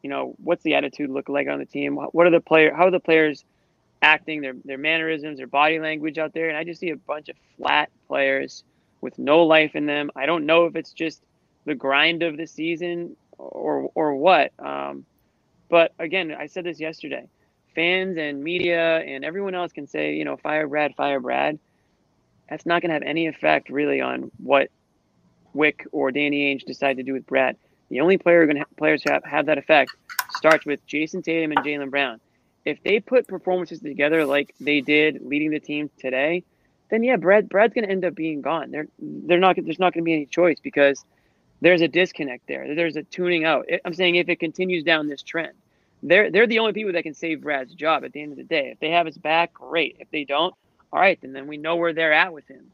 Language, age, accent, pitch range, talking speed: English, 20-39, American, 145-170 Hz, 225 wpm